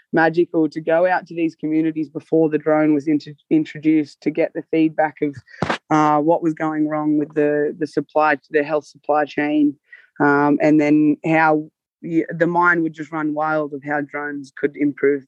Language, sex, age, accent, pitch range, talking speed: English, female, 20-39, Australian, 150-160 Hz, 185 wpm